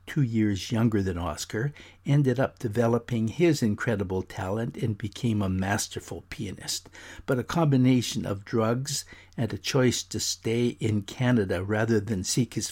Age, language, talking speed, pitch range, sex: 60-79, English, 150 wpm, 100-125 Hz, male